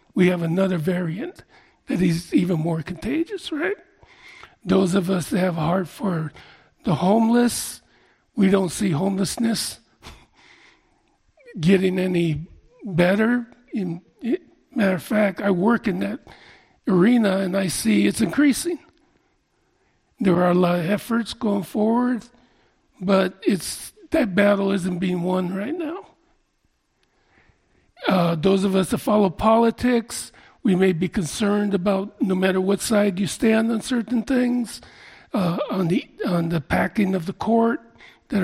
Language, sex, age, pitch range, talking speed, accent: English, male, 50-69, 185-235 Hz, 135 wpm, American